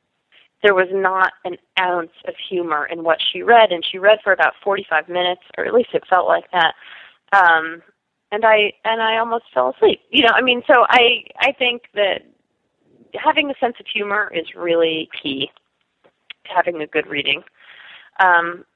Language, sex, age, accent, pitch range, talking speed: English, female, 30-49, American, 170-235 Hz, 180 wpm